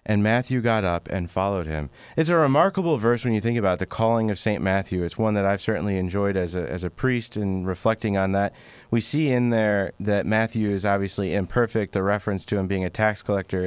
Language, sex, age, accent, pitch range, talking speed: English, male, 30-49, American, 95-110 Hz, 225 wpm